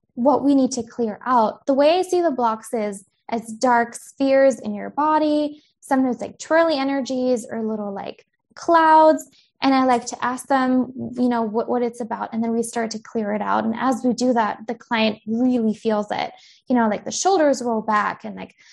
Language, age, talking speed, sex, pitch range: English, 10-29, 210 wpm, female, 220-270 Hz